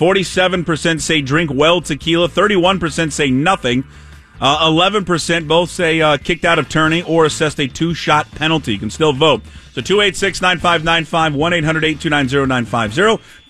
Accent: American